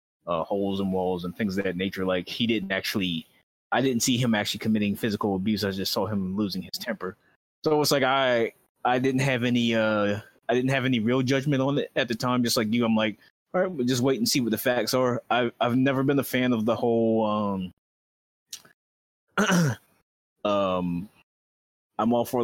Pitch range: 95-115 Hz